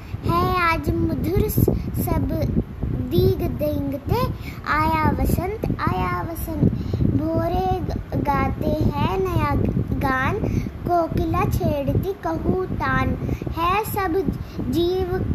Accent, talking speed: native, 85 wpm